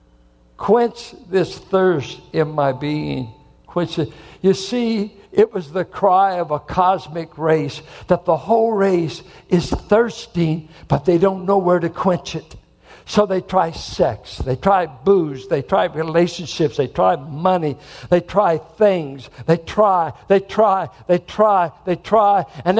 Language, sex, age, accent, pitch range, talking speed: English, male, 60-79, American, 175-240 Hz, 150 wpm